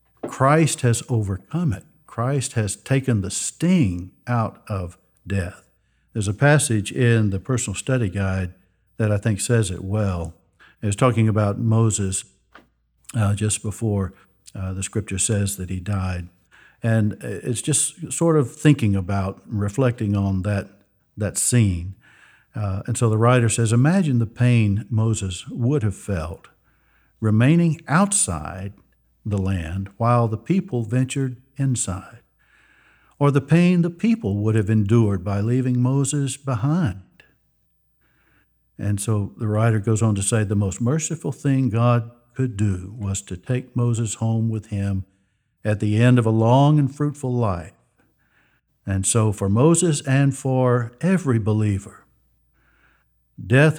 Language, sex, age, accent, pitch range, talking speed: English, male, 60-79, American, 100-125 Hz, 140 wpm